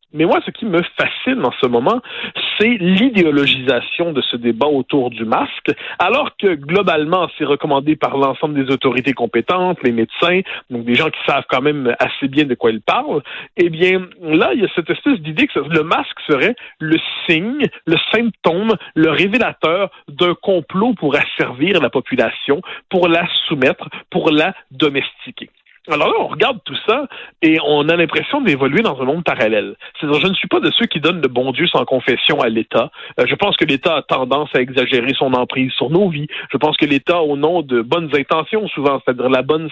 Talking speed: 200 wpm